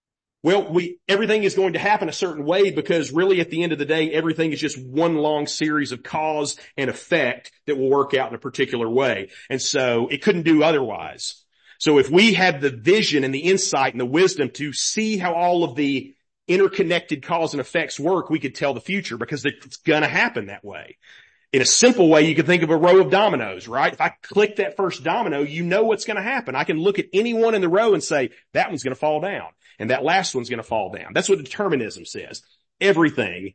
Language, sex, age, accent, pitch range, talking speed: English, male, 40-59, American, 140-190 Hz, 235 wpm